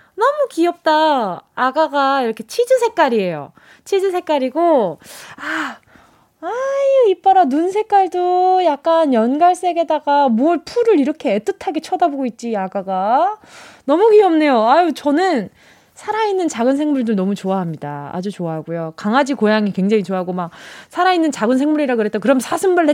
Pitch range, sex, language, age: 220-335 Hz, female, Korean, 20-39